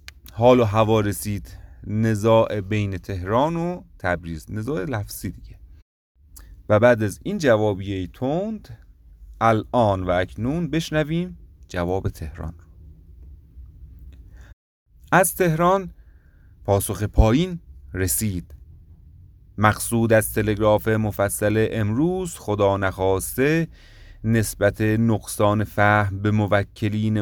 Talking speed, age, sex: 95 wpm, 30-49, male